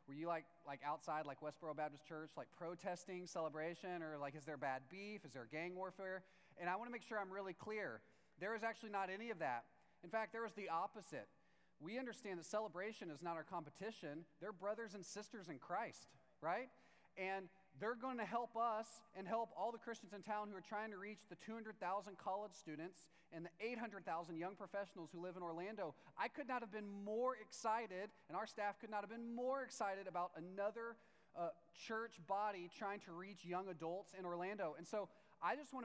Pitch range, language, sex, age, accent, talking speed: 160-210 Hz, English, male, 30-49, American, 205 wpm